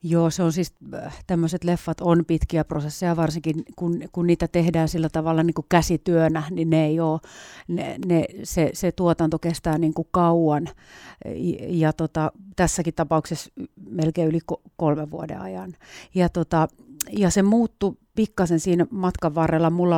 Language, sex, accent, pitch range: Finnish, female, native, 155-175 Hz